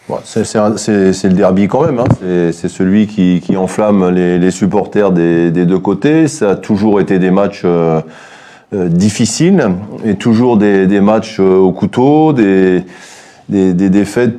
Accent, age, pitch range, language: French, 30-49, 90-105 Hz, French